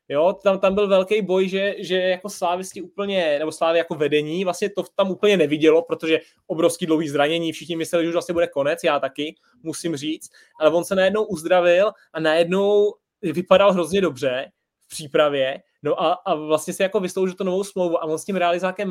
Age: 20-39